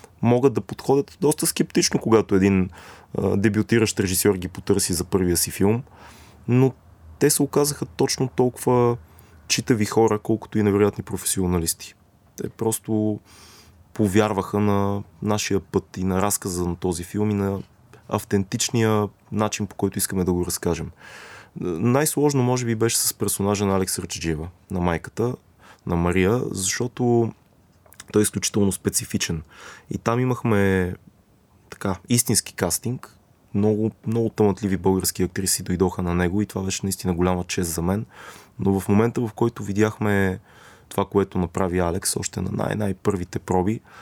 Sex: male